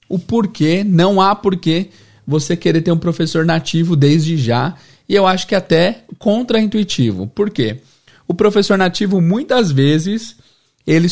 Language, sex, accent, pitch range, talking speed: Portuguese, male, Brazilian, 135-190 Hz, 145 wpm